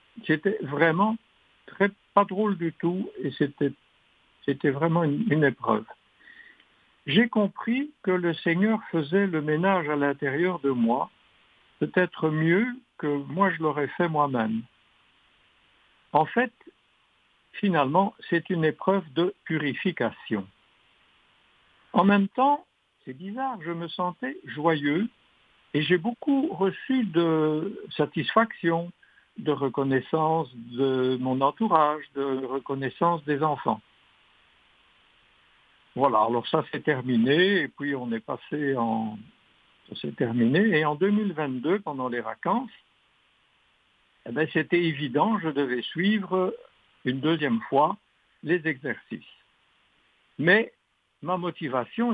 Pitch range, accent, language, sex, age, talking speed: 145-200 Hz, French, French, male, 60-79, 115 wpm